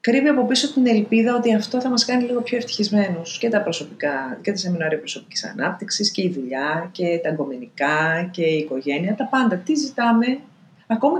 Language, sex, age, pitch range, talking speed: Greek, female, 30-49, 185-270 Hz, 190 wpm